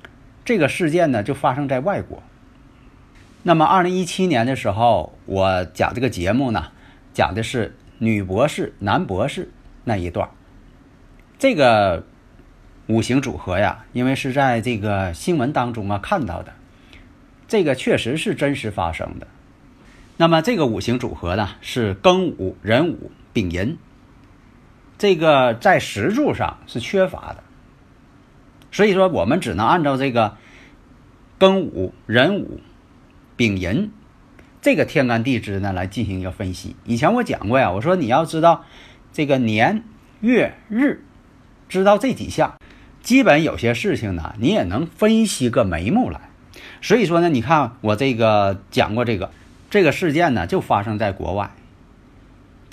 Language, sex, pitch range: Chinese, male, 100-145 Hz